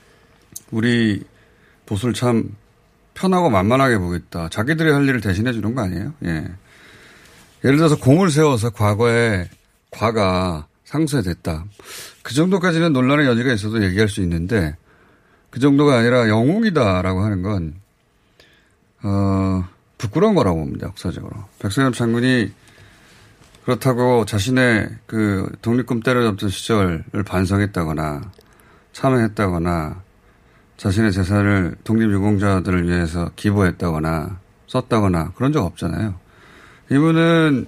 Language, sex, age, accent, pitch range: Korean, male, 30-49, native, 95-125 Hz